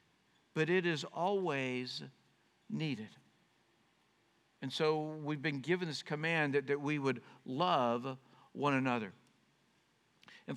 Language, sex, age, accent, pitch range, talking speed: English, male, 60-79, American, 125-175 Hz, 115 wpm